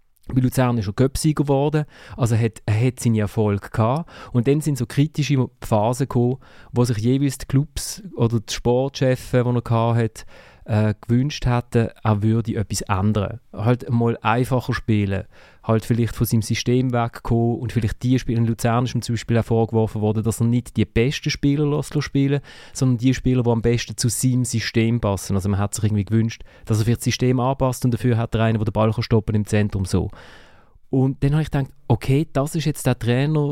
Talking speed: 200 wpm